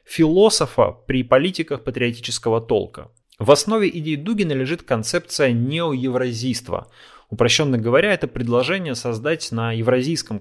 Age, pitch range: 30-49, 120-160 Hz